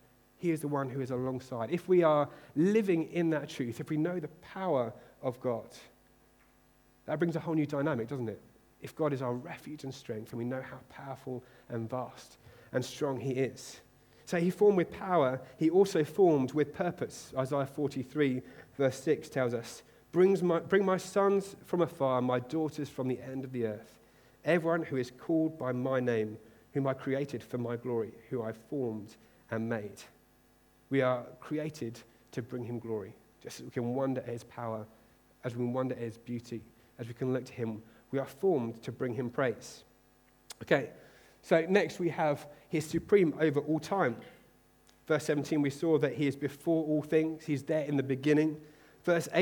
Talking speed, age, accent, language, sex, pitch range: 185 wpm, 40-59, British, English, male, 125-160 Hz